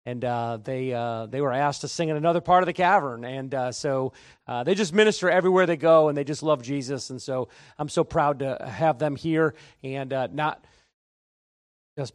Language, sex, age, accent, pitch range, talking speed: English, male, 40-59, American, 150-195 Hz, 215 wpm